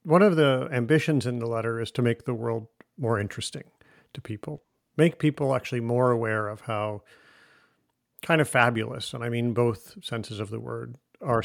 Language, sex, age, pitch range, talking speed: English, male, 50-69, 115-145 Hz, 185 wpm